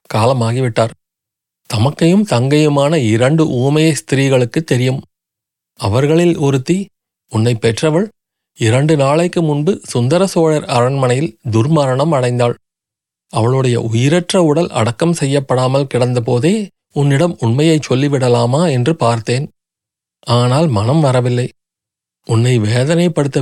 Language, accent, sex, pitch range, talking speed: Tamil, native, male, 120-150 Hz, 85 wpm